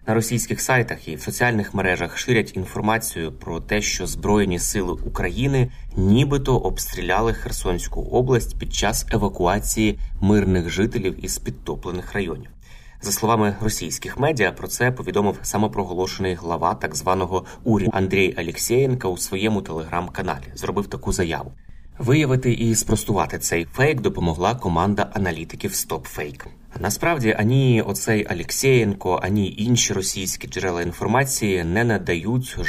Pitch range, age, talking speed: 90-110 Hz, 20-39, 125 wpm